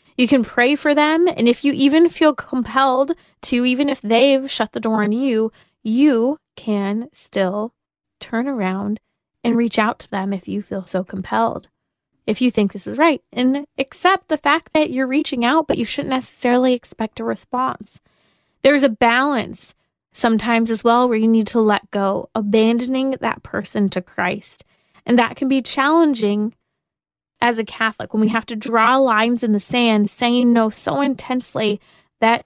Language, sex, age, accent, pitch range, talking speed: English, female, 20-39, American, 215-265 Hz, 175 wpm